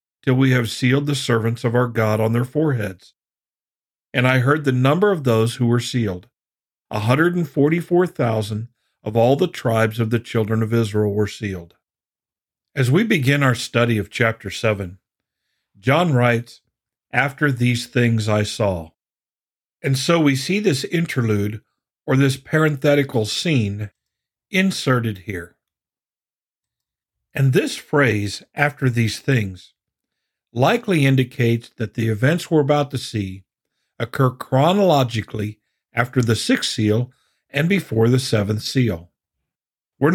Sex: male